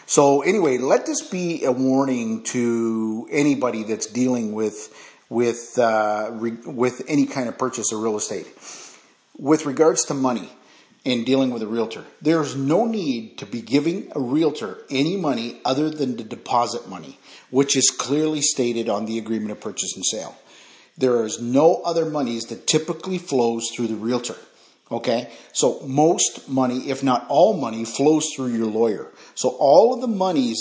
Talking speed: 170 wpm